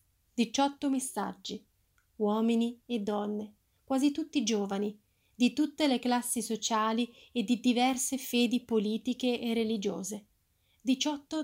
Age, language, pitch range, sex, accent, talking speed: 30-49, Italian, 205-250 Hz, female, native, 110 wpm